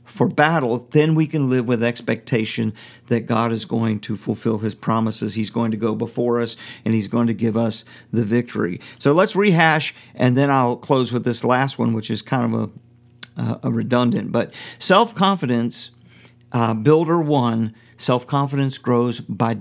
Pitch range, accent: 115-140 Hz, American